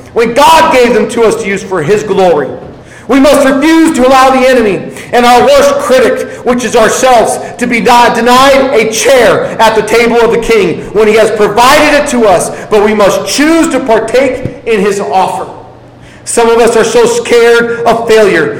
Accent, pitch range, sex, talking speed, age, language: American, 195-235 Hz, male, 195 wpm, 40-59, English